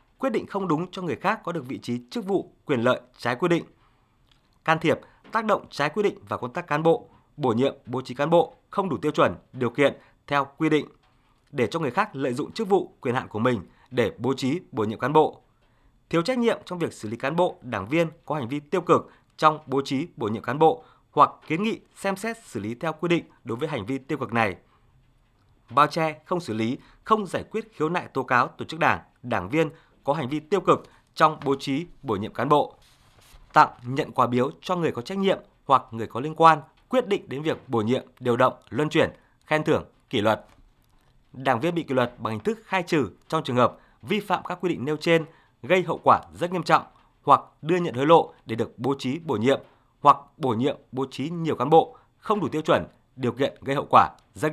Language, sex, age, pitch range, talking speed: Vietnamese, male, 20-39, 125-165 Hz, 240 wpm